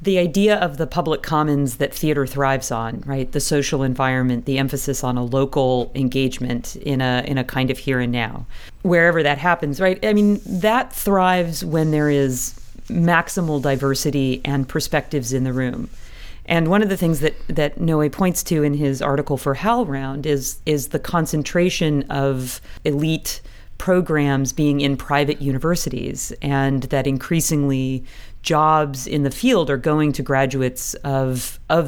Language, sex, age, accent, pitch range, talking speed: English, female, 40-59, American, 135-170 Hz, 160 wpm